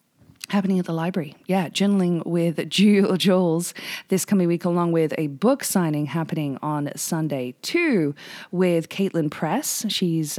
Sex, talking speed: female, 145 wpm